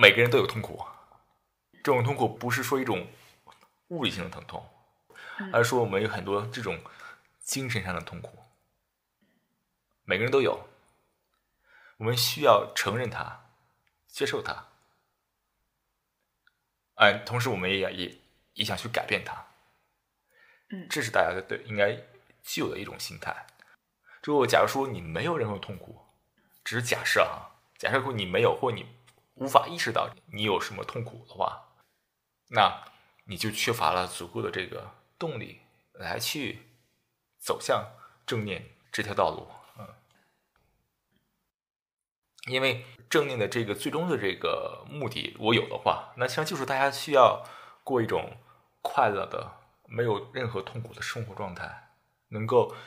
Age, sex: 20-39, male